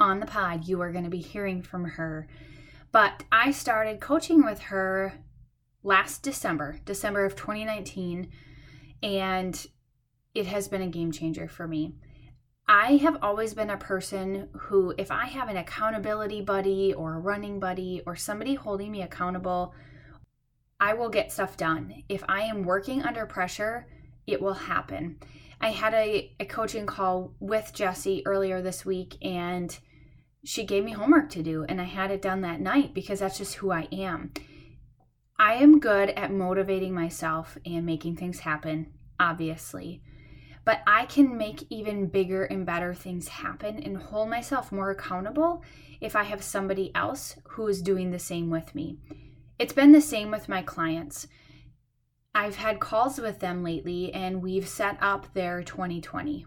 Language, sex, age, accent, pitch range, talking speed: English, female, 10-29, American, 165-210 Hz, 165 wpm